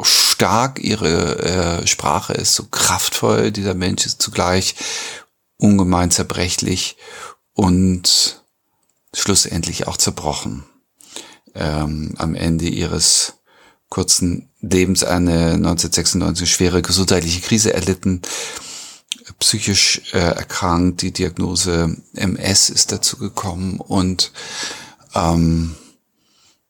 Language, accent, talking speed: German, German, 90 wpm